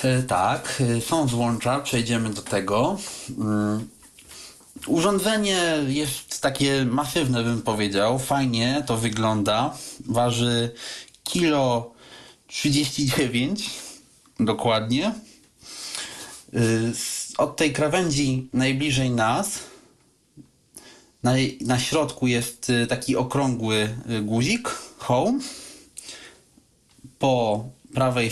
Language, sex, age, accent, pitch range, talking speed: Polish, male, 30-49, native, 110-140 Hz, 70 wpm